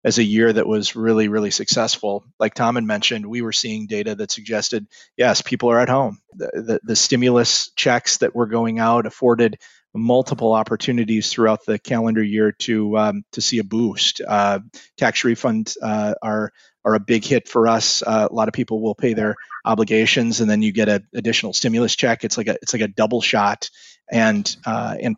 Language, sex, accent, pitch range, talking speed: English, male, American, 110-130 Hz, 200 wpm